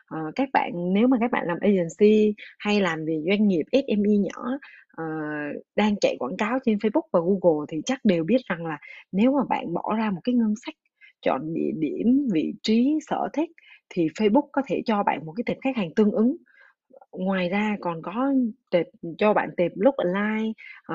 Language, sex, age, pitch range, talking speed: Vietnamese, female, 20-39, 185-260 Hz, 200 wpm